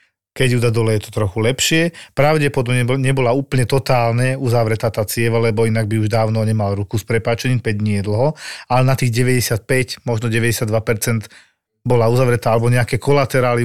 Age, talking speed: 40-59, 165 wpm